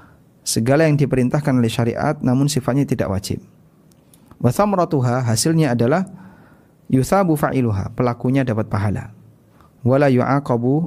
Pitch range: 105-150 Hz